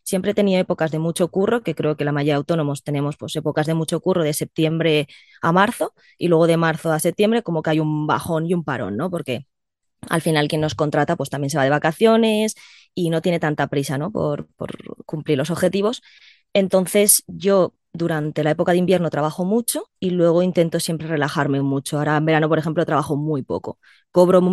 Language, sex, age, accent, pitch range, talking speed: Spanish, female, 20-39, Spanish, 150-180 Hz, 210 wpm